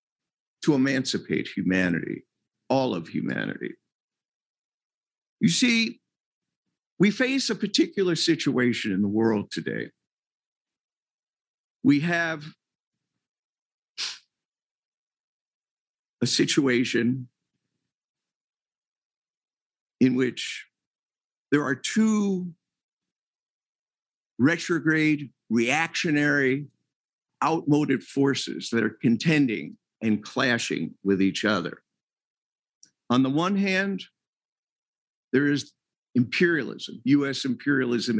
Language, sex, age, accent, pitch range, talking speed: English, male, 50-69, American, 120-165 Hz, 75 wpm